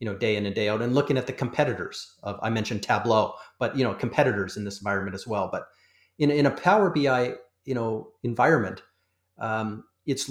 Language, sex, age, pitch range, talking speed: English, male, 40-59, 100-130 Hz, 210 wpm